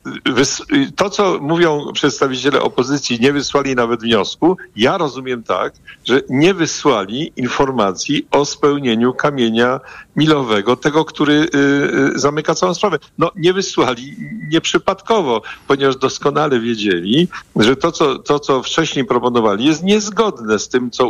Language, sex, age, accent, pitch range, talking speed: Polish, male, 50-69, native, 120-155 Hz, 120 wpm